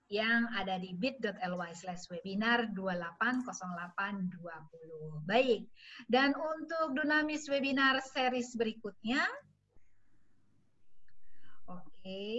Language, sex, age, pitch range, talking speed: English, female, 30-49, 200-255 Hz, 65 wpm